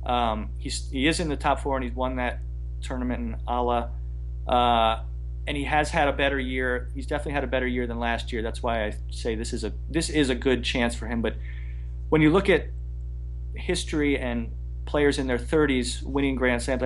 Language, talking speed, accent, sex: English, 210 wpm, American, male